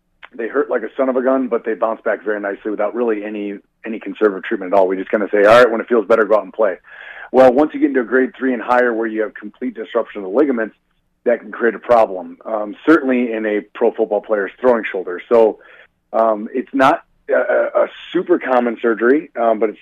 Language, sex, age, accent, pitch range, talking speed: English, male, 40-59, American, 110-130 Hz, 245 wpm